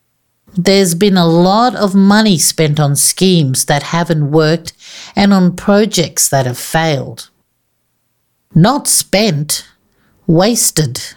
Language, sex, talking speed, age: English, female, 115 wpm, 60-79